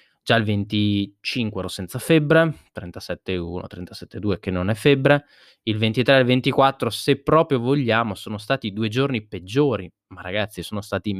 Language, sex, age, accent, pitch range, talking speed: Italian, male, 20-39, native, 100-120 Hz, 155 wpm